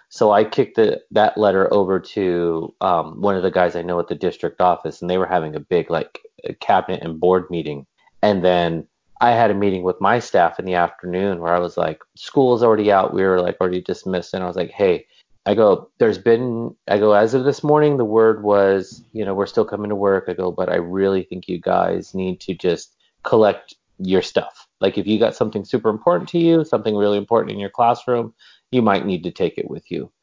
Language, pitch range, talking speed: English, 90-115 Hz, 235 wpm